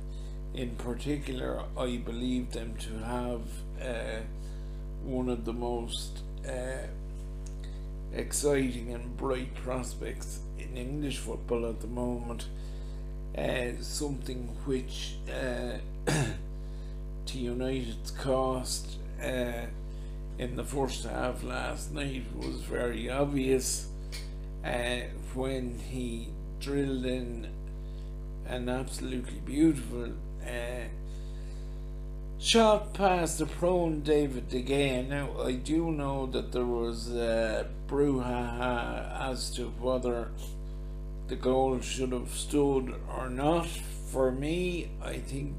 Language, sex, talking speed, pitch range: English, male, 105 wpm, 115-140 Hz